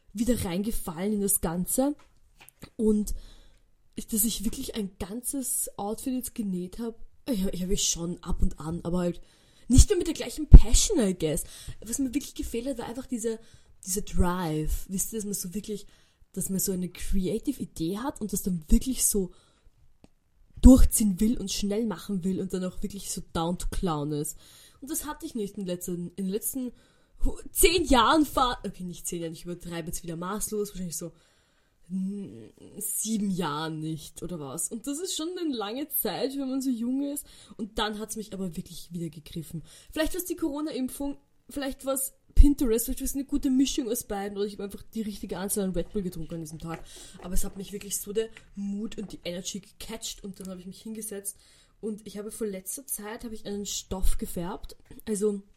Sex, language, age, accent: female, German, 20-39, German